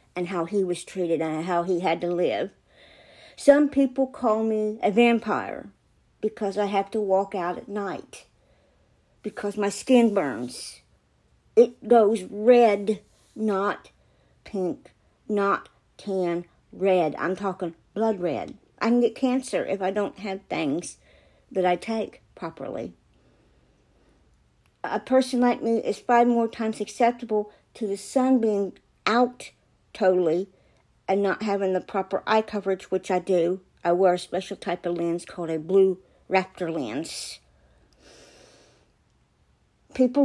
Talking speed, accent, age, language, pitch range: 135 wpm, American, 60-79, English, 180-220 Hz